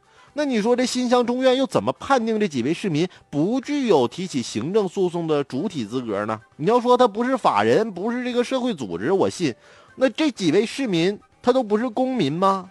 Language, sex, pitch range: Chinese, male, 175-250 Hz